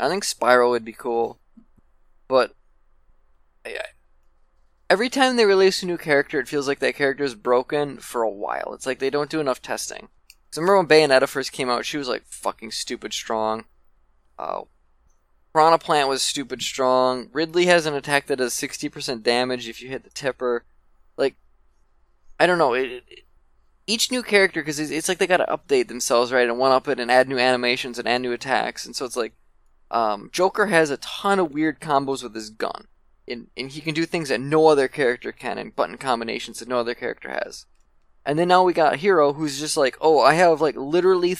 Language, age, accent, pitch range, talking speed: English, 20-39, American, 115-170 Hz, 210 wpm